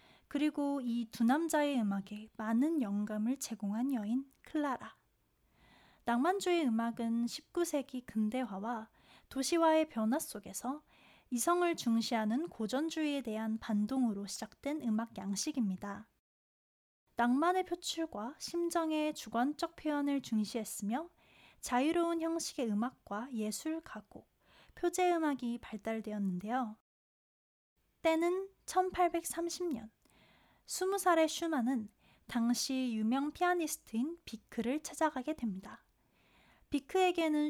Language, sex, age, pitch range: Korean, female, 20-39, 225-325 Hz